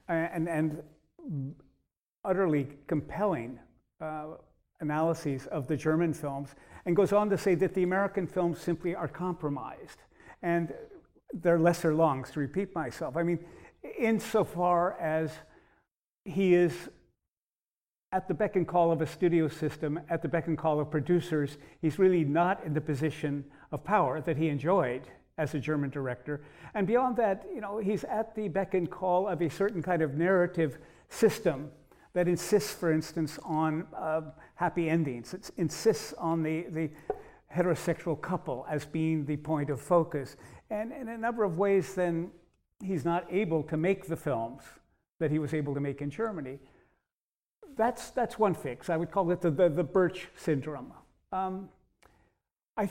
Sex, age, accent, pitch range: male, 50-69, American, 155-185 Hz